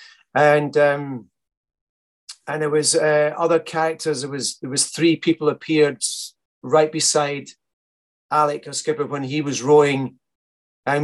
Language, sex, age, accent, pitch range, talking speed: English, male, 30-49, British, 135-190 Hz, 135 wpm